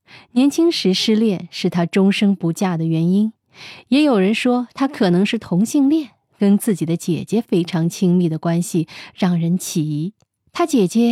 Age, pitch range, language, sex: 20-39, 170-215 Hz, Chinese, female